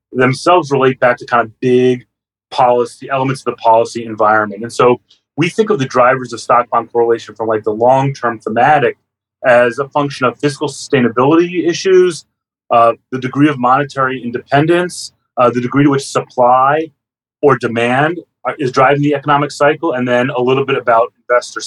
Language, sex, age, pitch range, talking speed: English, male, 30-49, 120-145 Hz, 170 wpm